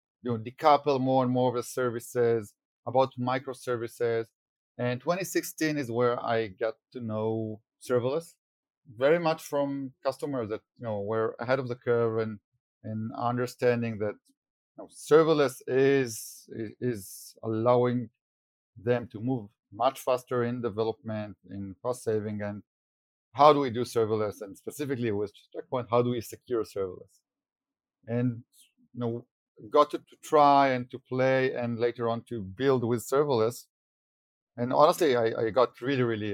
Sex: male